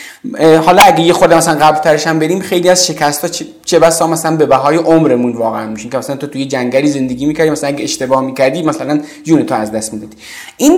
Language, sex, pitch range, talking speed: Persian, male, 155-215 Hz, 200 wpm